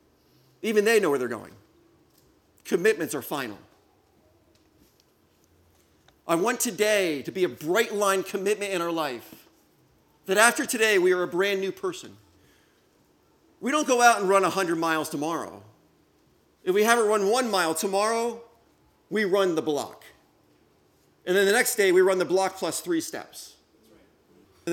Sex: male